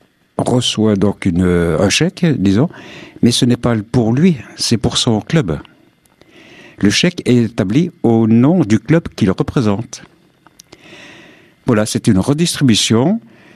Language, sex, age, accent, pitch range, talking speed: French, male, 60-79, French, 100-130 Hz, 135 wpm